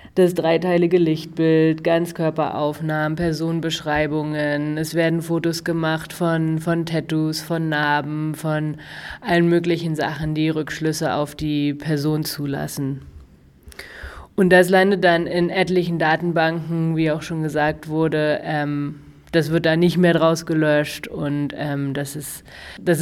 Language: German